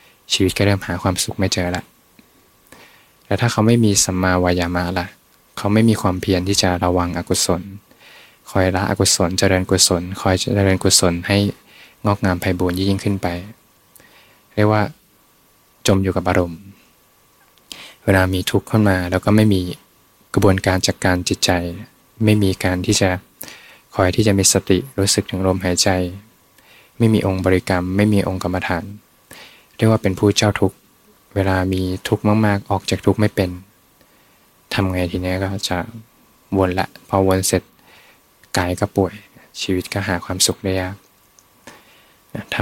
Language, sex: Thai, male